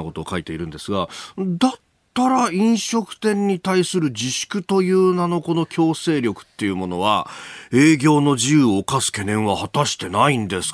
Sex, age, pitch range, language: male, 40-59, 115-180 Hz, Japanese